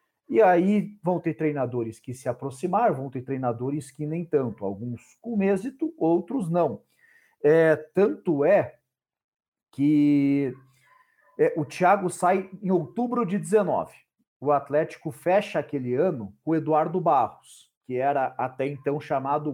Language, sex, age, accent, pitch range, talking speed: Portuguese, male, 50-69, Brazilian, 140-205 Hz, 130 wpm